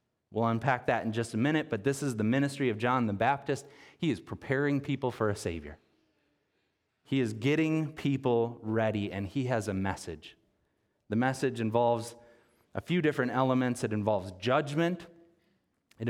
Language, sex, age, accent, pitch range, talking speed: English, male, 30-49, American, 115-150 Hz, 165 wpm